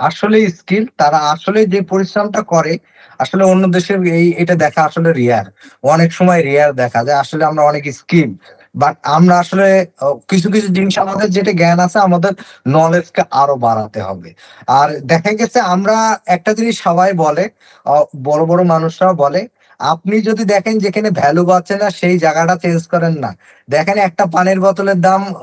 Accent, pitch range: native, 155-190 Hz